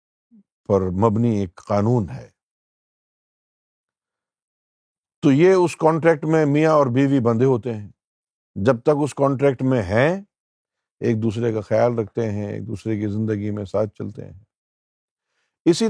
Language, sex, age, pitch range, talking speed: Urdu, male, 50-69, 115-160 Hz, 140 wpm